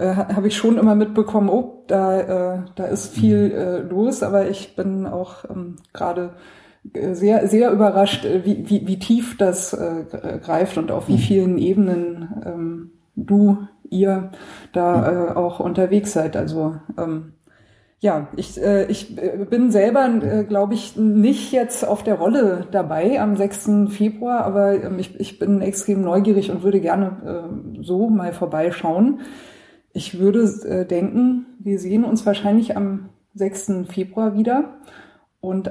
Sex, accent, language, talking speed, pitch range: female, German, German, 145 wpm, 180-210 Hz